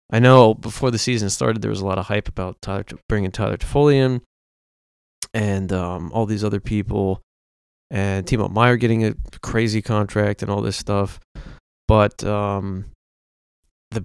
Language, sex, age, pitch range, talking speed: English, male, 20-39, 95-115 Hz, 160 wpm